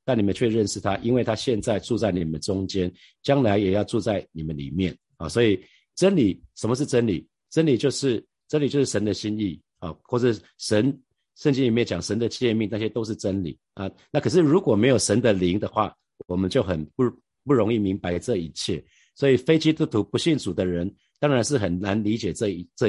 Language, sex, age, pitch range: Chinese, male, 50-69, 95-130 Hz